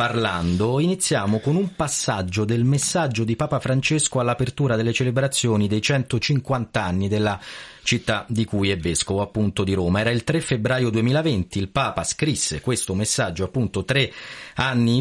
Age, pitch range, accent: 30-49, 95-120 Hz, native